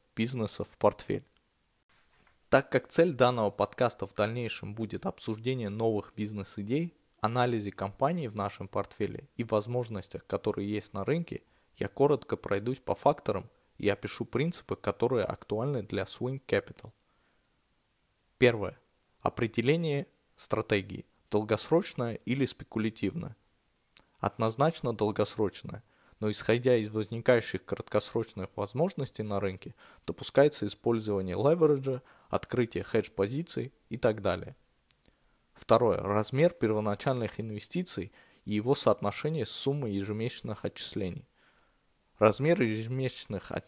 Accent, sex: native, male